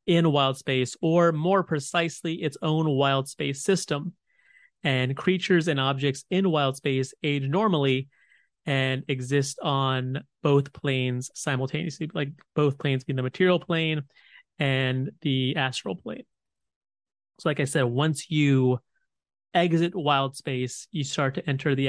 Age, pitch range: 30-49, 135-165 Hz